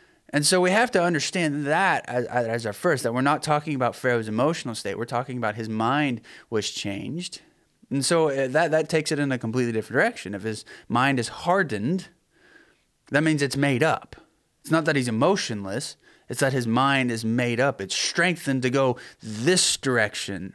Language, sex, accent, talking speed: English, male, American, 190 wpm